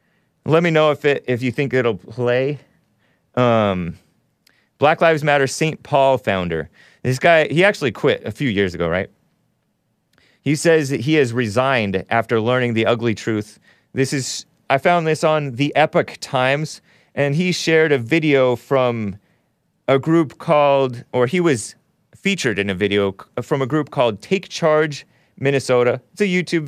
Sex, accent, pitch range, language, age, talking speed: male, American, 115-155 Hz, English, 30-49, 165 wpm